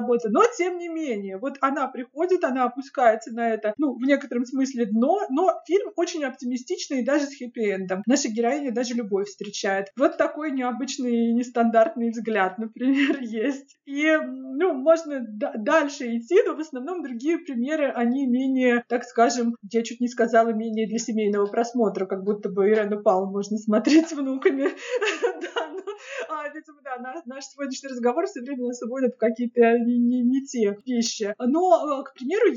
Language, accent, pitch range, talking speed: Russian, native, 235-300 Hz, 160 wpm